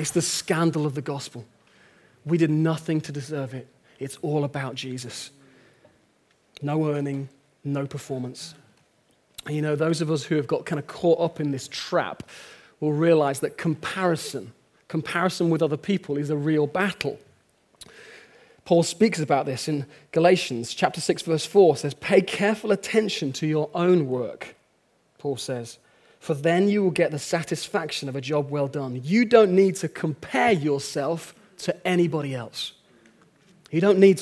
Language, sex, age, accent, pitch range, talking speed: English, male, 40-59, British, 145-185 Hz, 160 wpm